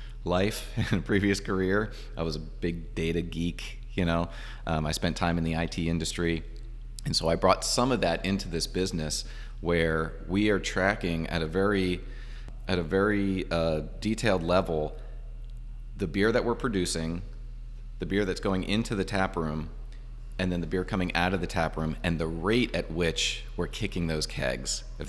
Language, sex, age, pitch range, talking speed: English, male, 30-49, 80-100 Hz, 185 wpm